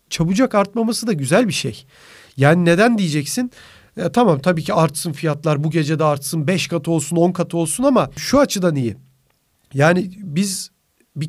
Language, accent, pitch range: Turkish, native, 155-210 Hz